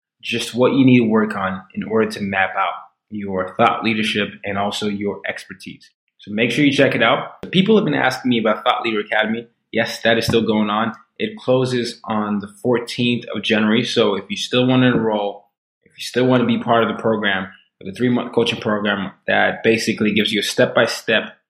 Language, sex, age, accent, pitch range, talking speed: English, male, 20-39, American, 105-125 Hz, 210 wpm